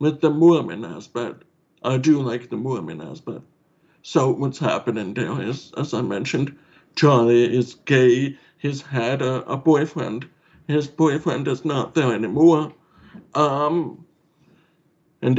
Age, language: 60-79, English